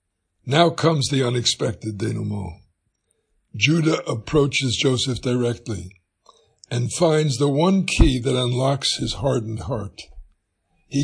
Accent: American